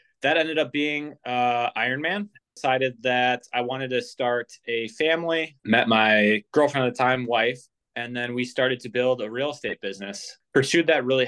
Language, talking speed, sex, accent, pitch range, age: English, 180 wpm, male, American, 110-130 Hz, 20-39